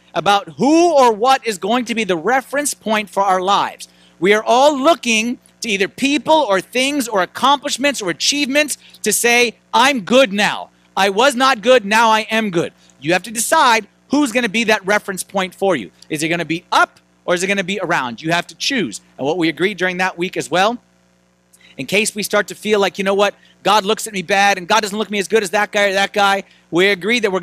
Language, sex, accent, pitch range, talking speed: English, male, American, 155-225 Hz, 245 wpm